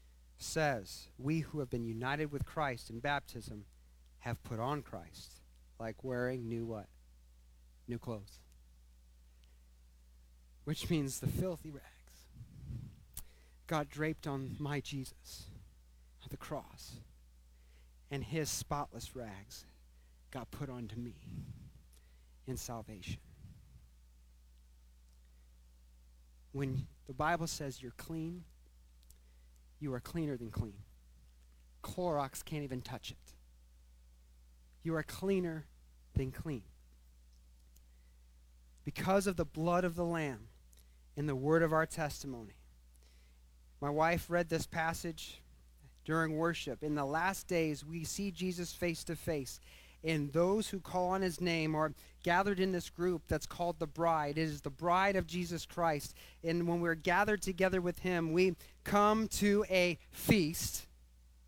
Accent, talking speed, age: American, 125 wpm, 40-59